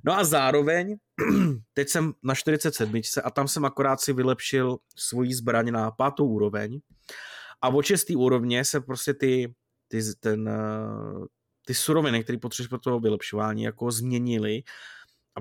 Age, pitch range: 20-39, 115-140 Hz